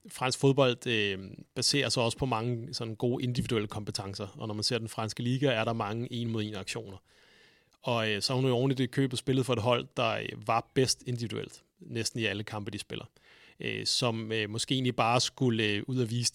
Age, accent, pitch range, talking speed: 30-49, native, 110-125 Hz, 185 wpm